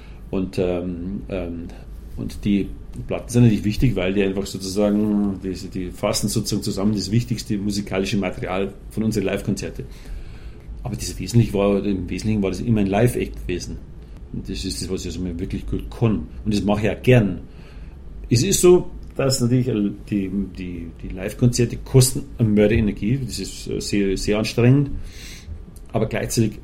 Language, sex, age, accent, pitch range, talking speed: German, male, 40-59, German, 95-120 Hz, 160 wpm